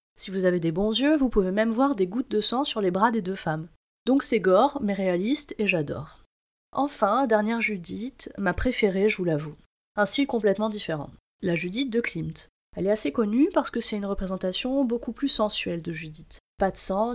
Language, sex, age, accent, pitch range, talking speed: French, female, 30-49, French, 190-240 Hz, 210 wpm